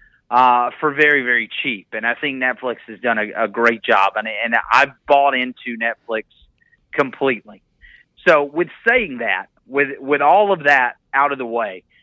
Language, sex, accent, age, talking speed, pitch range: English, male, American, 30-49, 175 wpm, 120-150 Hz